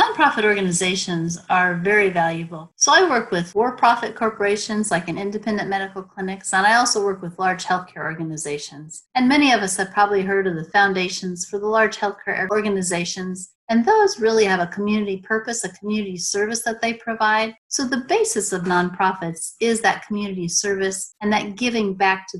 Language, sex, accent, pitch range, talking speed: English, female, American, 180-215 Hz, 175 wpm